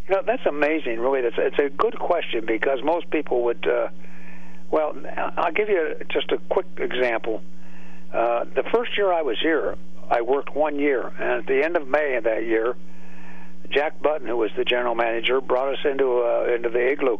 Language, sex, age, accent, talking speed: English, male, 60-79, American, 200 wpm